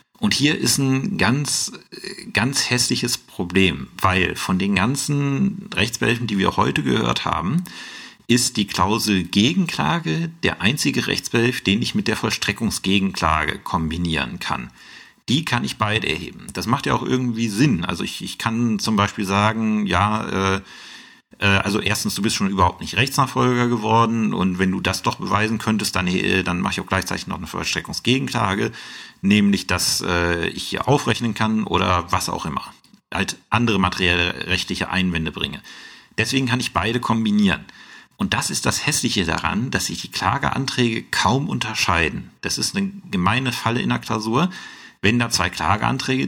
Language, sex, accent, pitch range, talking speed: German, male, German, 95-125 Hz, 160 wpm